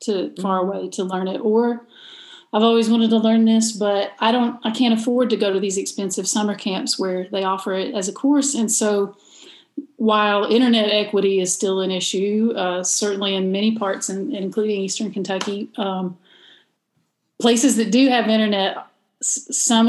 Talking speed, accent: 180 wpm, American